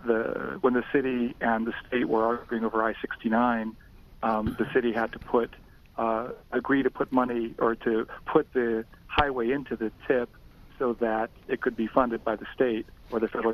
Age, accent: 50-69, American